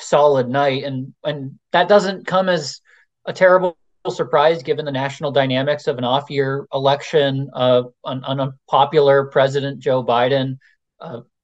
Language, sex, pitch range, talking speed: English, male, 135-155 Hz, 145 wpm